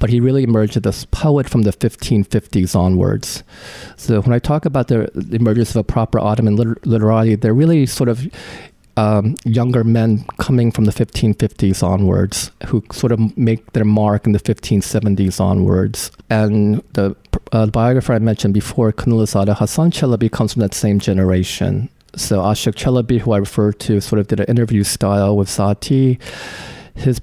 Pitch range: 105-120 Hz